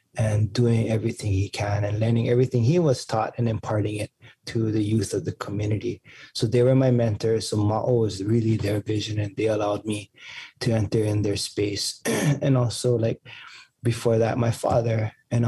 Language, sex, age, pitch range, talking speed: English, male, 20-39, 110-125 Hz, 185 wpm